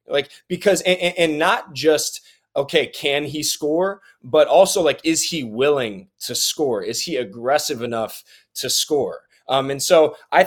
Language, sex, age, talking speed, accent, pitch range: English, male, 20-39, 160 wpm, American, 125-160 Hz